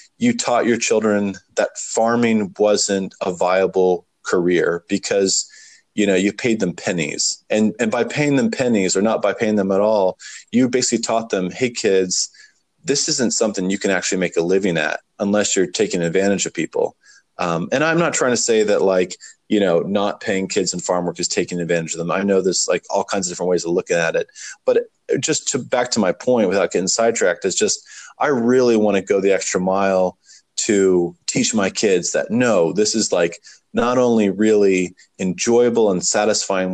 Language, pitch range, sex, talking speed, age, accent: English, 95-120 Hz, male, 200 wpm, 30-49, American